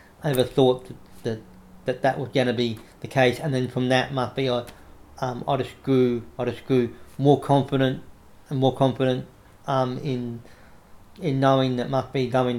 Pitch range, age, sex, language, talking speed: 120-135 Hz, 40-59, male, English, 185 wpm